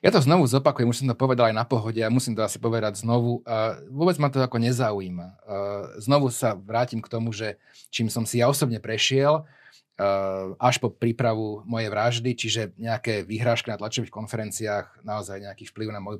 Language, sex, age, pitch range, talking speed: Slovak, male, 30-49, 110-130 Hz, 185 wpm